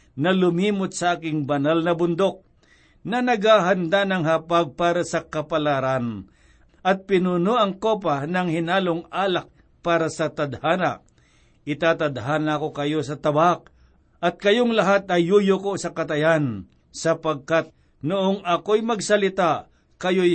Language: Filipino